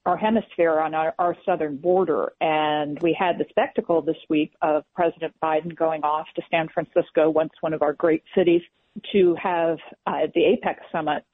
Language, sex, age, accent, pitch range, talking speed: English, female, 50-69, American, 160-185 Hz, 180 wpm